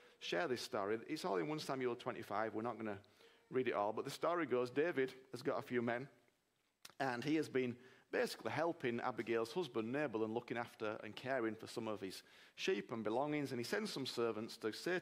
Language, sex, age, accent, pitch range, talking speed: English, male, 40-59, British, 115-155 Hz, 215 wpm